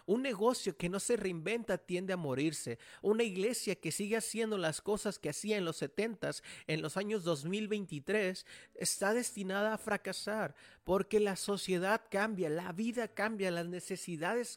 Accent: Mexican